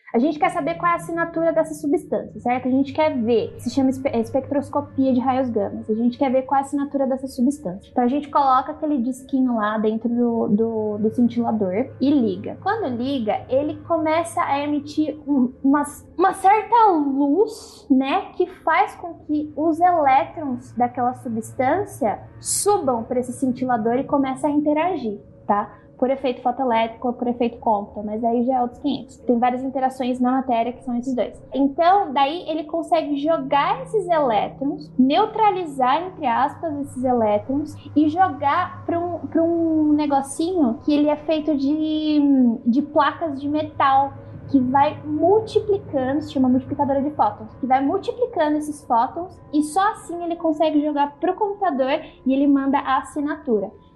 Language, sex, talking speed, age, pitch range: Portuguese, female, 165 wpm, 10-29, 255-325 Hz